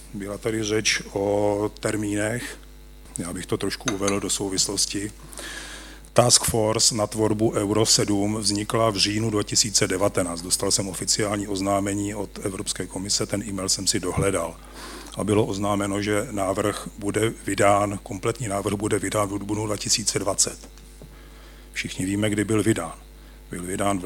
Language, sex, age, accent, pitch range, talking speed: Czech, male, 40-59, native, 100-110 Hz, 140 wpm